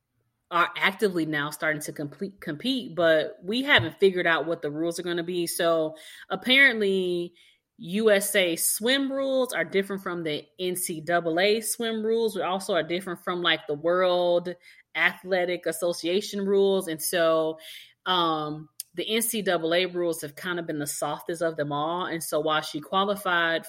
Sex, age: female, 30-49